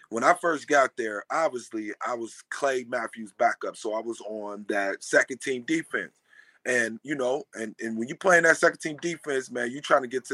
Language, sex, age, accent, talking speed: English, male, 30-49, American, 205 wpm